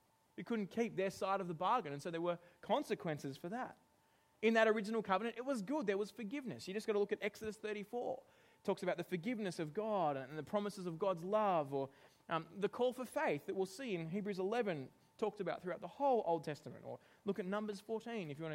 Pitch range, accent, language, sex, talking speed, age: 165-220 Hz, Australian, English, male, 235 wpm, 20-39